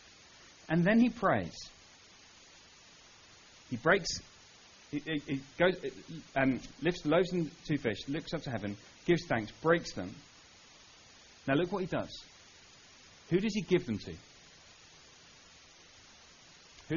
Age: 40-59